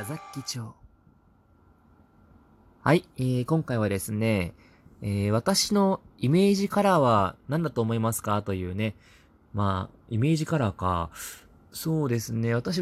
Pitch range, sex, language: 95-130 Hz, male, Japanese